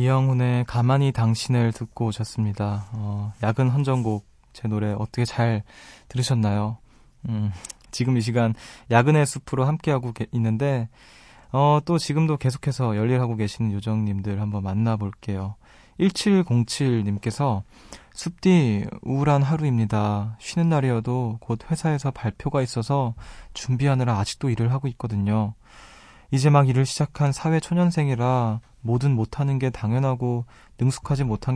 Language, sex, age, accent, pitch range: Korean, male, 20-39, native, 110-135 Hz